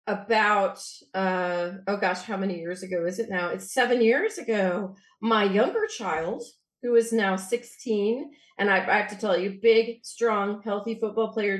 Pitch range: 180-220 Hz